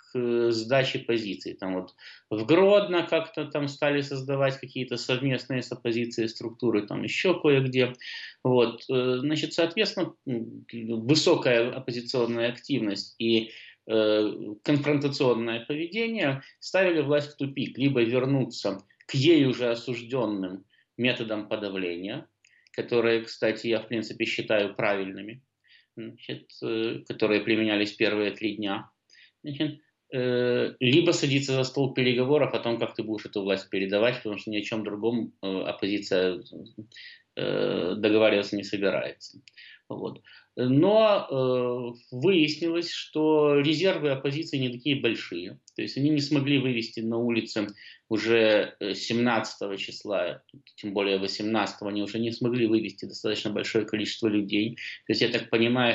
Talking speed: 120 wpm